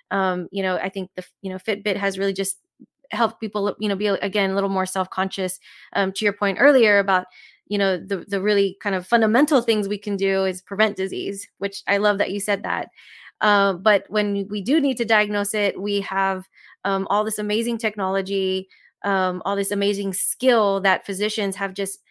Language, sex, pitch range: English, female, 190-215 Hz